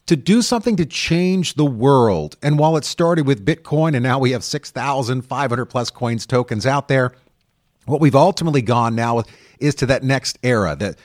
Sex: male